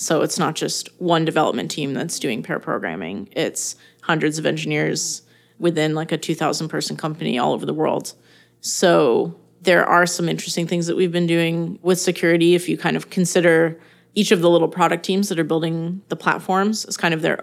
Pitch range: 160-175 Hz